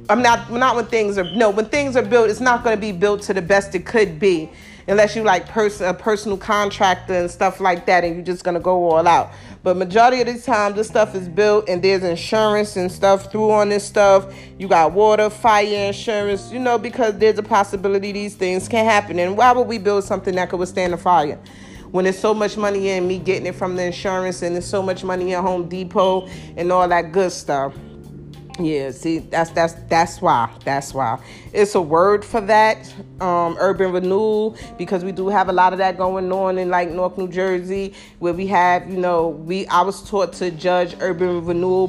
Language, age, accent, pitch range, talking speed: English, 40-59, American, 180-205 Hz, 220 wpm